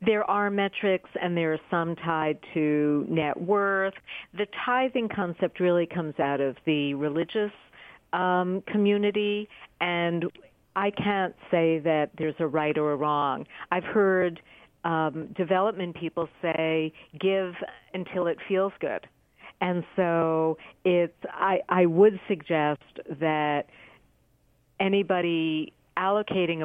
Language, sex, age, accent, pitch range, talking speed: English, female, 50-69, American, 160-190 Hz, 120 wpm